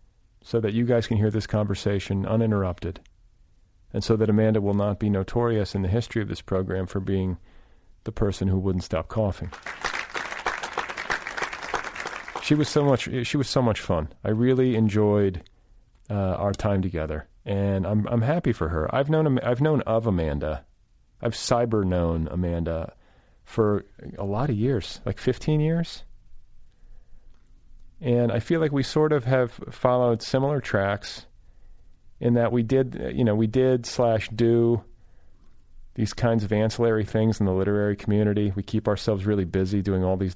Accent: American